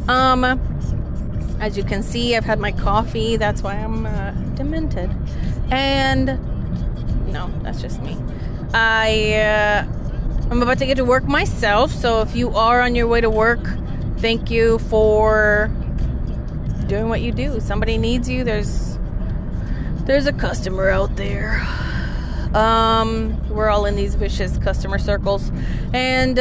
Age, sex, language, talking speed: 30-49, female, English, 145 wpm